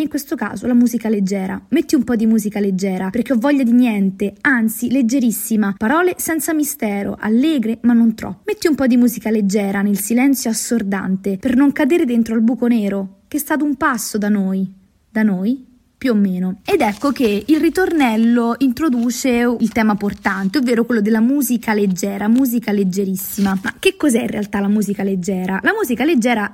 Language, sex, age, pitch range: Italian, female, 20-39, 205-255 Hz